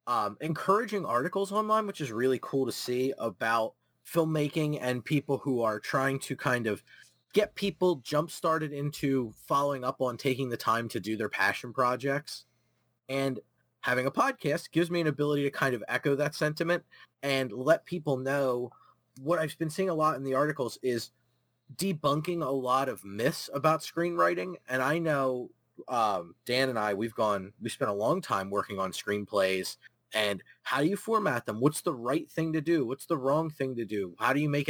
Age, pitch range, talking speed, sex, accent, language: 30-49, 120-150 Hz, 190 wpm, male, American, English